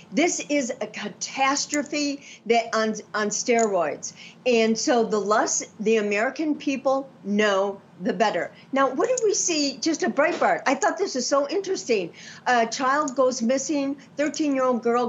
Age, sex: 50-69, female